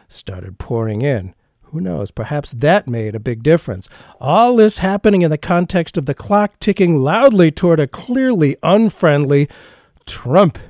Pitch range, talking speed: 125-175 Hz, 150 wpm